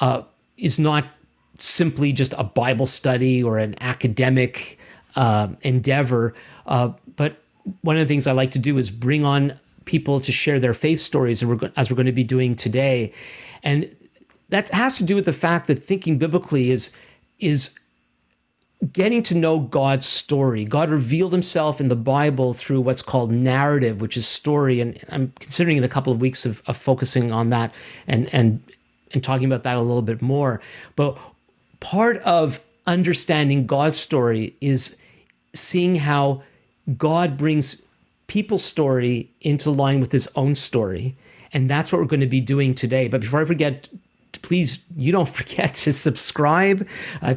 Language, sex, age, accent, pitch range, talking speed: English, male, 50-69, American, 125-155 Hz, 165 wpm